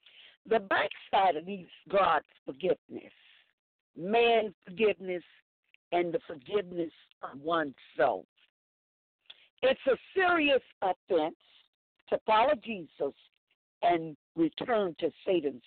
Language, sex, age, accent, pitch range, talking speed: English, female, 50-69, American, 190-270 Hz, 95 wpm